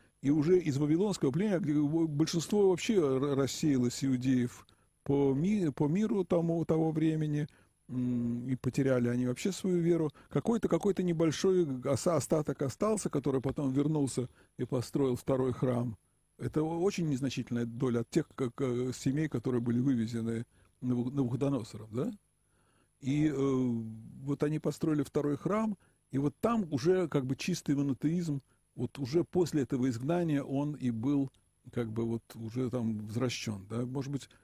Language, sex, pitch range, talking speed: Russian, male, 120-155 Hz, 140 wpm